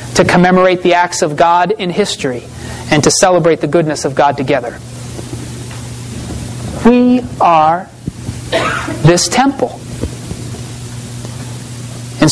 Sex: male